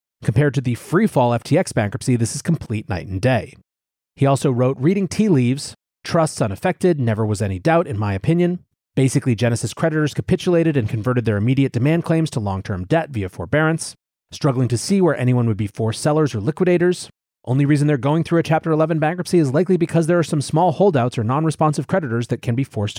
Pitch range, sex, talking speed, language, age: 120-165 Hz, male, 200 wpm, English, 30-49